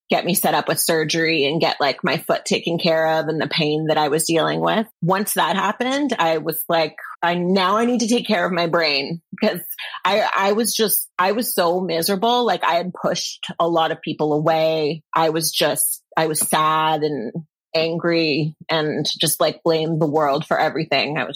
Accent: American